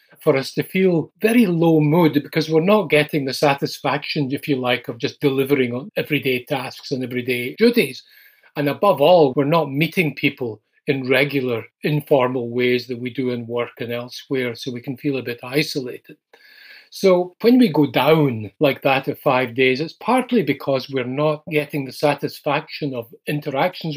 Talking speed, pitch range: 175 wpm, 130-155 Hz